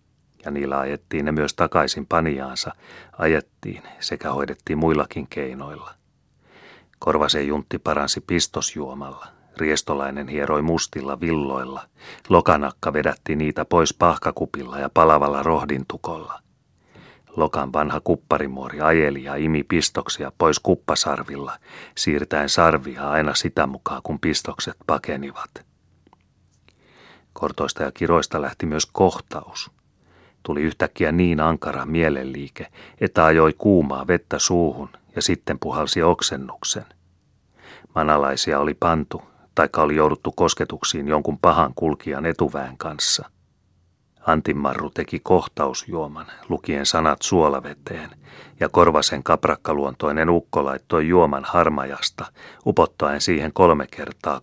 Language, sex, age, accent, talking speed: Finnish, male, 40-59, native, 100 wpm